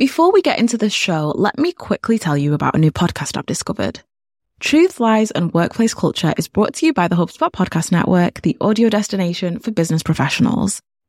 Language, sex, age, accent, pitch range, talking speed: English, female, 10-29, British, 175-240 Hz, 200 wpm